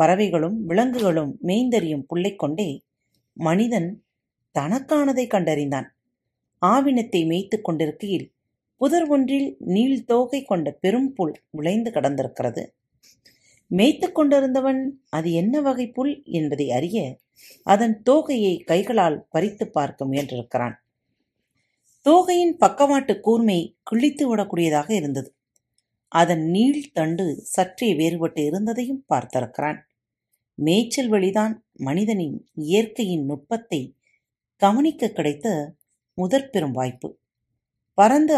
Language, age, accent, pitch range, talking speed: Tamil, 40-59, native, 145-230 Hz, 90 wpm